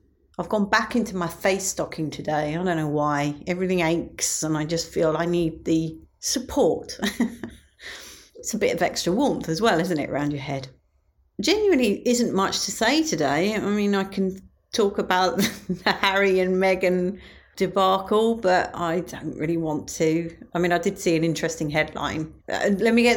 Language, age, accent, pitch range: English, 40-59, British, 165-215 Hz